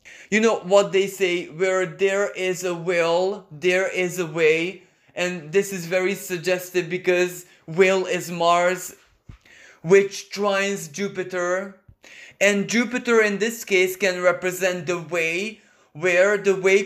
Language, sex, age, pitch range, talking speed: English, male, 20-39, 170-195 Hz, 135 wpm